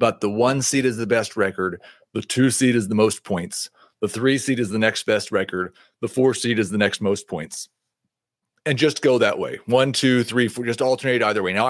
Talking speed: 230 wpm